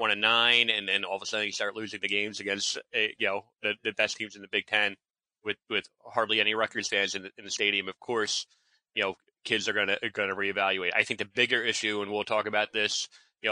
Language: English